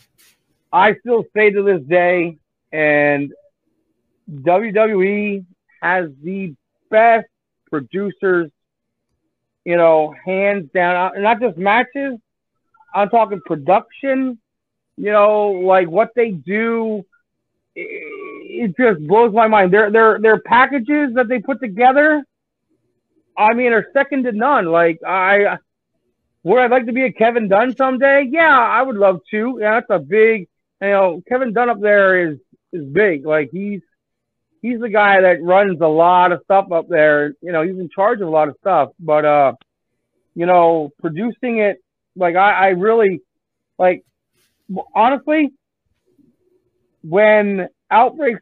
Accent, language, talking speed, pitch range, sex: American, English, 140 wpm, 180-240 Hz, male